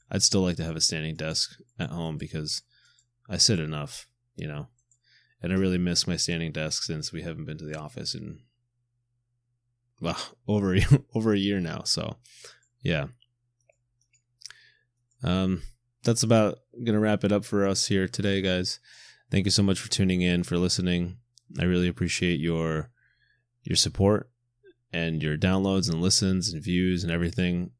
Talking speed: 165 wpm